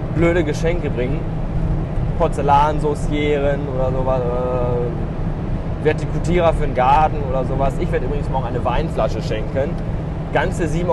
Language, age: German, 20-39